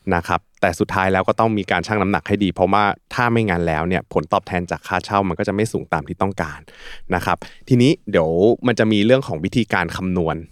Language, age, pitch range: Thai, 20-39, 90-110 Hz